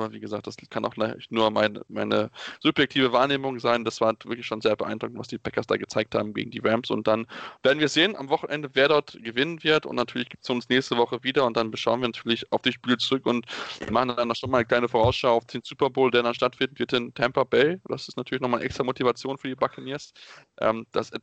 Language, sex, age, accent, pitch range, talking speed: German, male, 20-39, German, 120-140 Hz, 240 wpm